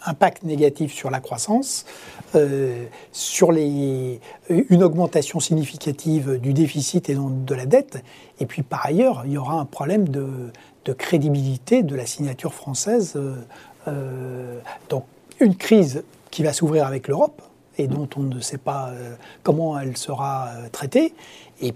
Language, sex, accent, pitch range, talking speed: French, male, French, 135-170 Hz, 145 wpm